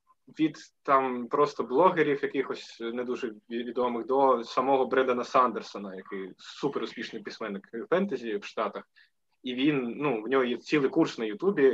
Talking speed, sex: 150 wpm, male